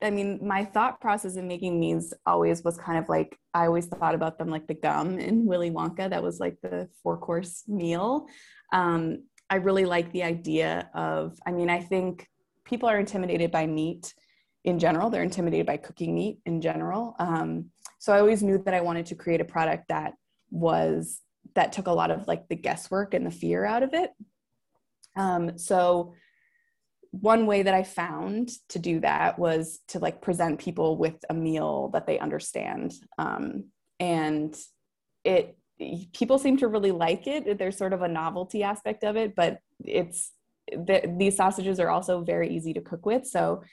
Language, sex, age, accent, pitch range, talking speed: English, female, 20-39, American, 165-200 Hz, 185 wpm